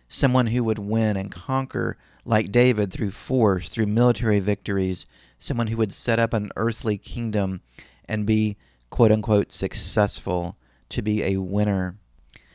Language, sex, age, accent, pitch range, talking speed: English, male, 30-49, American, 90-115 Hz, 140 wpm